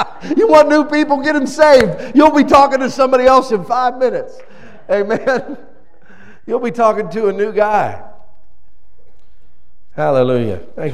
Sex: male